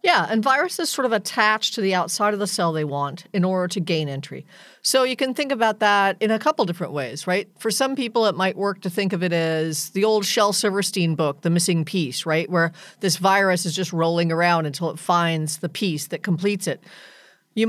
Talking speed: 225 wpm